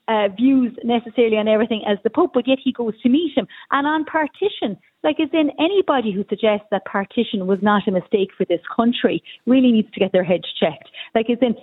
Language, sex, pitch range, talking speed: English, female, 190-250 Hz, 220 wpm